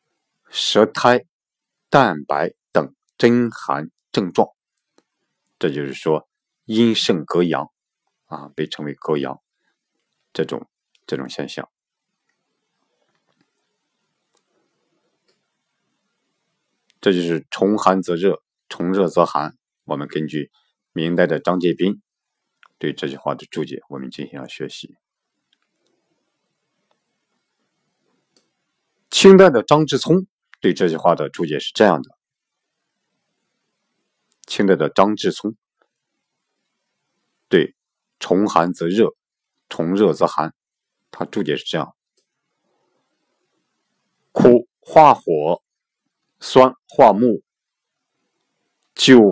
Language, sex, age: Chinese, male, 50-69